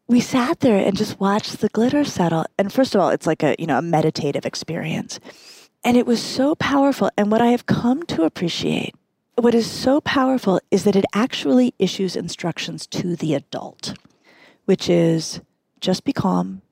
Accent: American